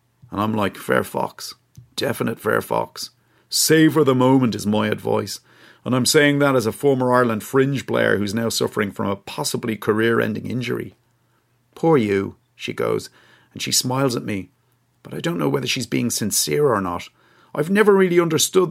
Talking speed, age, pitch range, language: 175 wpm, 40-59, 110-130 Hz, English